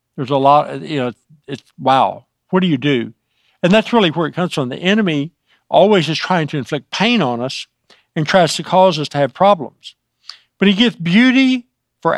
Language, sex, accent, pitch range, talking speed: English, male, American, 135-180 Hz, 200 wpm